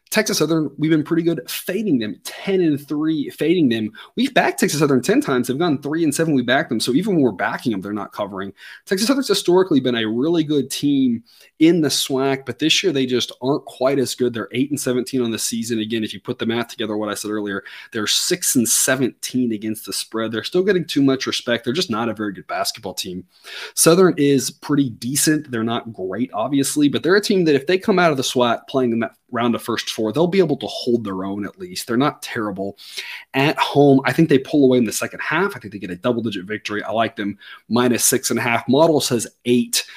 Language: English